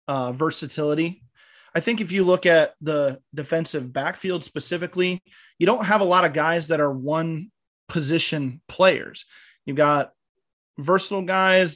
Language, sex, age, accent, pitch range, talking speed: English, male, 20-39, American, 150-185 Hz, 145 wpm